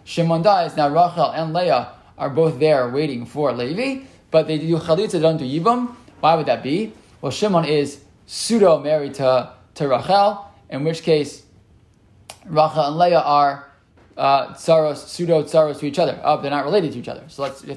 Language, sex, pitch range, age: English, male, 140-175 Hz, 20-39